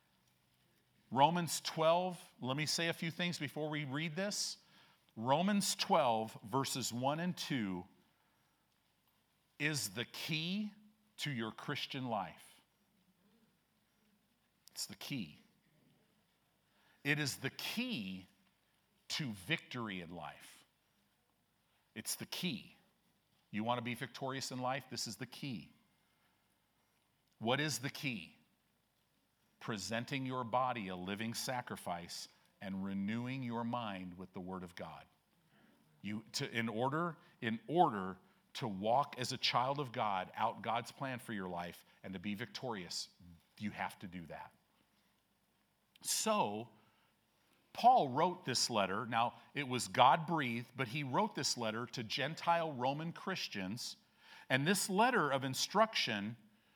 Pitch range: 110-165 Hz